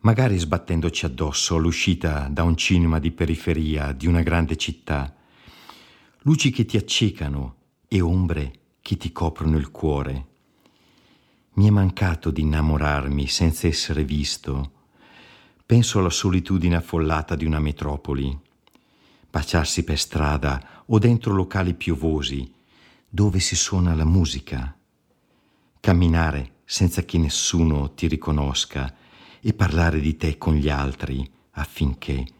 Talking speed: 120 wpm